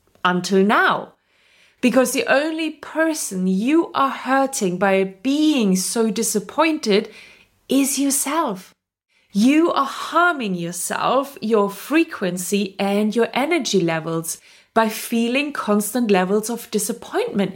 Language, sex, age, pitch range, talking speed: English, female, 30-49, 190-270 Hz, 105 wpm